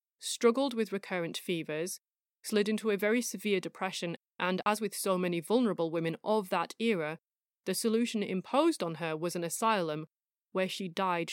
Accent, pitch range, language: British, 170-215 Hz, English